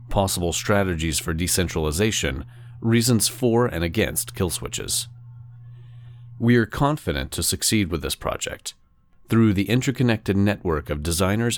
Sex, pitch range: male, 85-115 Hz